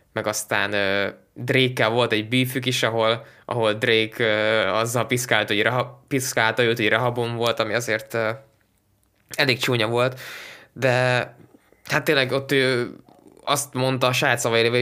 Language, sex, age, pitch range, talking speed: Hungarian, male, 20-39, 110-130 Hz, 150 wpm